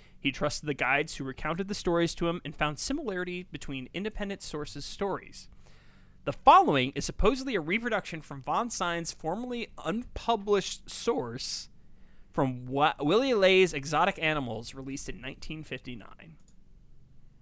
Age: 30-49